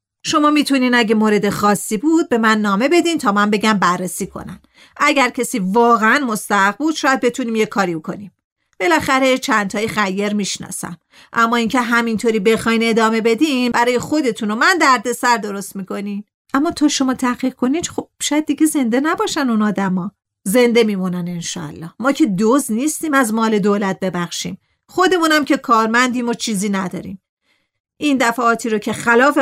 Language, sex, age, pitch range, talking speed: Persian, female, 40-59, 195-260 Hz, 155 wpm